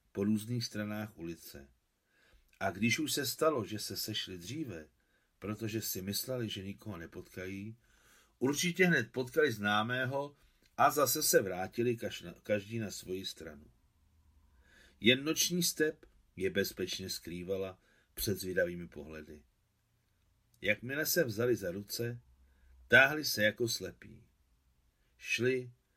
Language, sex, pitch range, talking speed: Czech, male, 90-115 Hz, 115 wpm